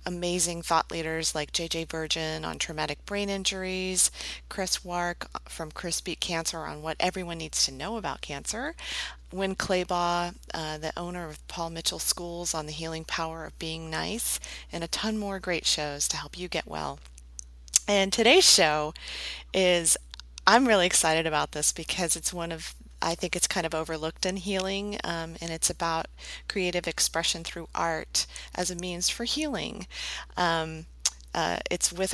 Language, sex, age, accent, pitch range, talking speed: English, female, 40-59, American, 155-180 Hz, 165 wpm